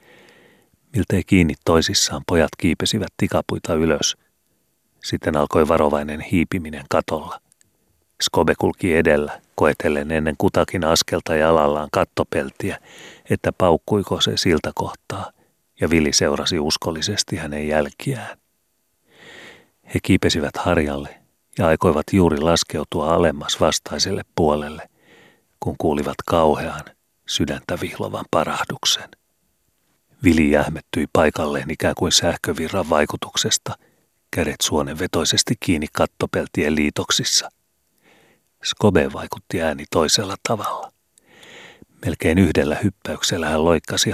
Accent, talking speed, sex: native, 95 wpm, male